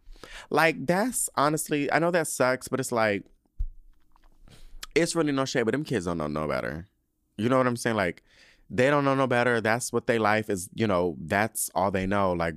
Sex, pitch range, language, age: male, 95-130 Hz, English, 20-39